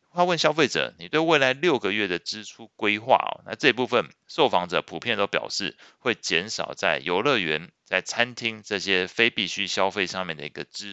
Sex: male